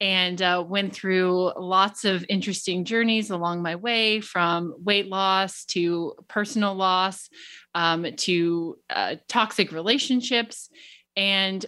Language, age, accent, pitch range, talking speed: English, 20-39, American, 180-220 Hz, 120 wpm